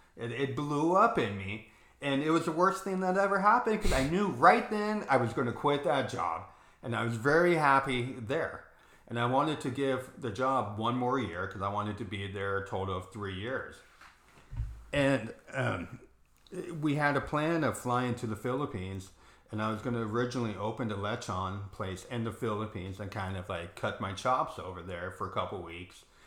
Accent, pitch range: American, 100-130 Hz